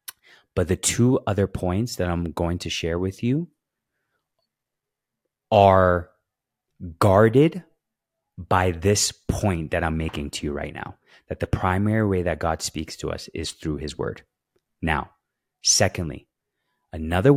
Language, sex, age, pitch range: English, male, 30-49, 85-110 Hz